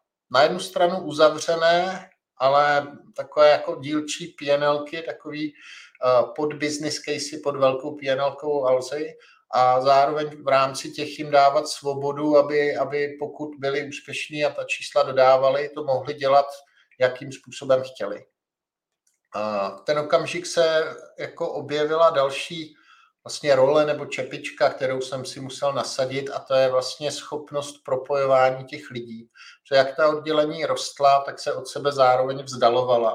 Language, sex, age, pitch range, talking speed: Slovak, male, 50-69, 130-150 Hz, 135 wpm